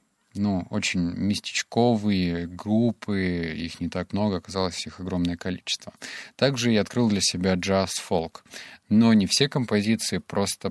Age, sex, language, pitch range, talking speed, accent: 30-49, male, Russian, 95-115 Hz, 130 wpm, native